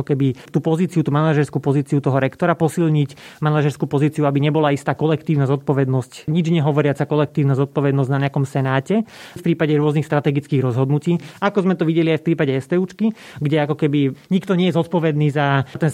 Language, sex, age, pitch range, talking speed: Slovak, male, 30-49, 140-160 Hz, 170 wpm